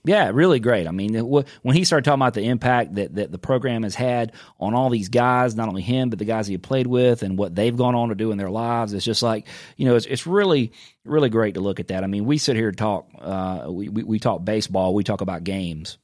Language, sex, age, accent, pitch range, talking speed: English, male, 30-49, American, 100-135 Hz, 270 wpm